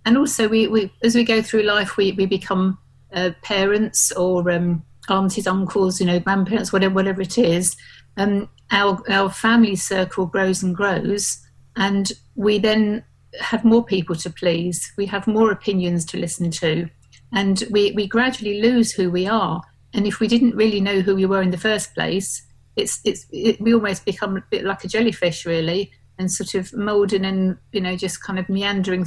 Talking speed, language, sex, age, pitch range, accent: 190 wpm, English, female, 50-69, 180-210 Hz, British